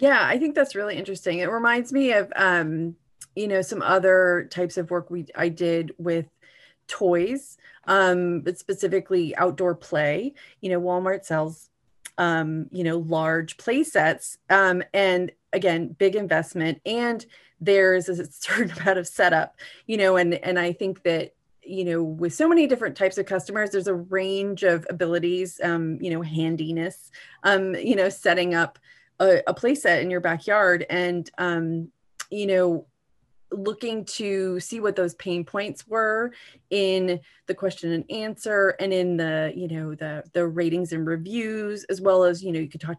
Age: 30-49